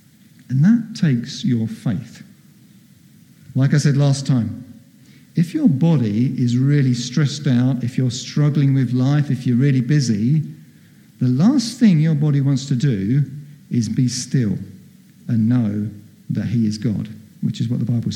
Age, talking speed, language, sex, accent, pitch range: 50-69, 160 wpm, English, male, British, 120-155 Hz